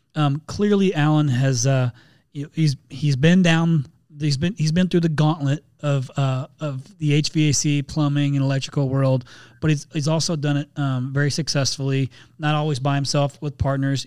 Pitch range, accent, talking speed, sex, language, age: 135-155 Hz, American, 180 wpm, male, English, 30-49